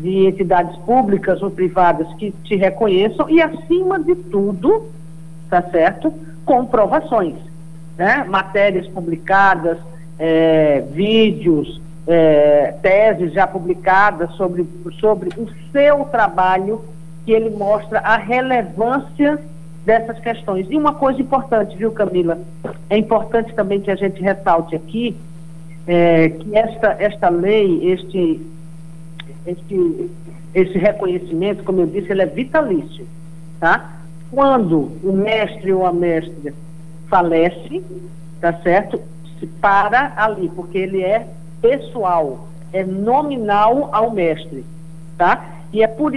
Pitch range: 165-220 Hz